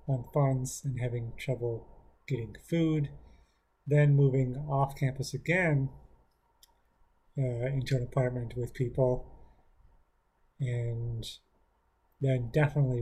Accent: American